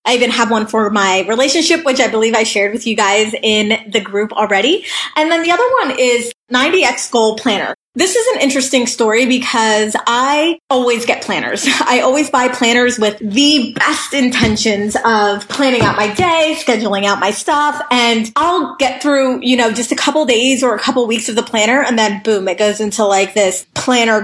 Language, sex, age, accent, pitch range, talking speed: English, female, 20-39, American, 215-260 Hz, 200 wpm